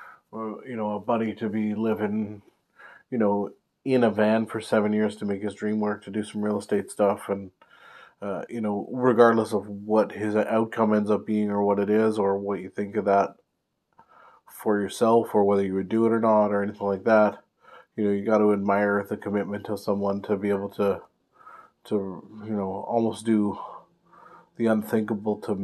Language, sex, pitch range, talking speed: English, male, 100-110 Hz, 195 wpm